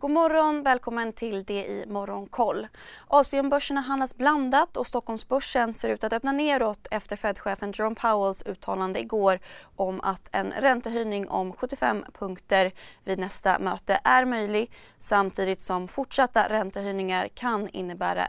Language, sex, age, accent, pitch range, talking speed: Swedish, female, 20-39, native, 190-250 Hz, 130 wpm